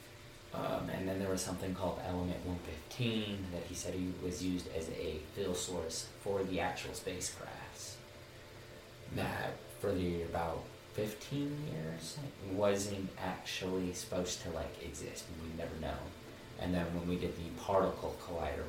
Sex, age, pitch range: male, 30-49, 75-100 Hz